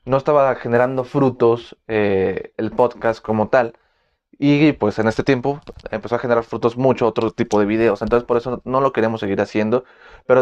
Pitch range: 115-145 Hz